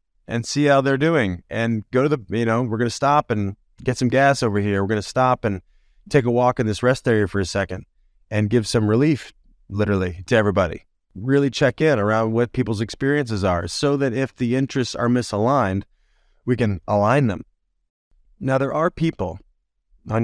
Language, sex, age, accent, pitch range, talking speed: English, male, 30-49, American, 100-125 Hz, 200 wpm